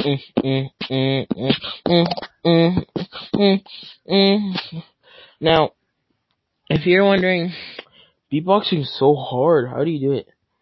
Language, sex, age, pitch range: English, male, 10-29, 140-175 Hz